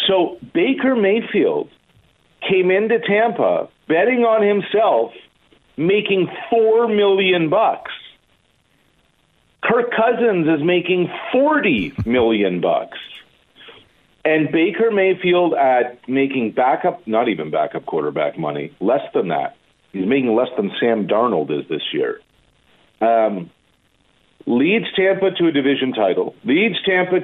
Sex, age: male, 50-69